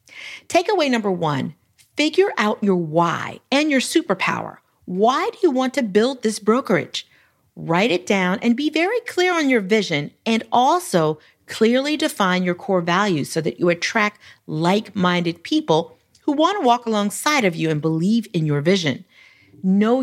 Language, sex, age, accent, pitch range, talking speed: English, female, 40-59, American, 170-245 Hz, 160 wpm